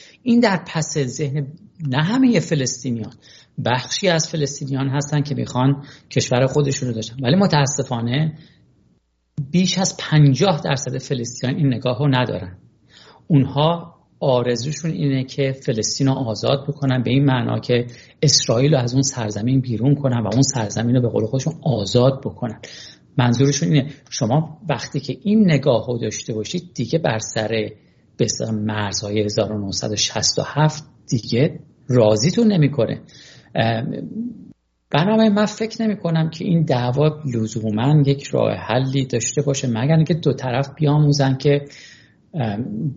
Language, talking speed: English, 125 wpm